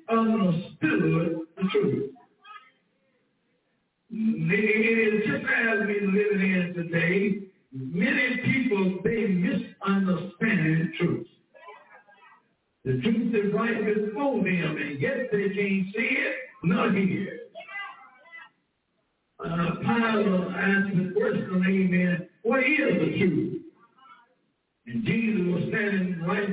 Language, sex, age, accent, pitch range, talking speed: English, male, 60-79, American, 180-220 Hz, 110 wpm